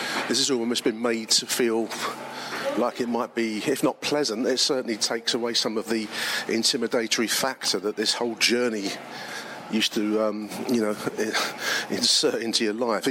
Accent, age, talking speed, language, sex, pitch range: British, 40-59, 165 wpm, English, male, 110-125 Hz